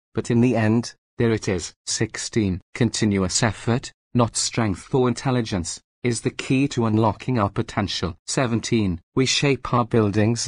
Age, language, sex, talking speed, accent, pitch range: 40-59, English, male, 150 wpm, British, 105-125 Hz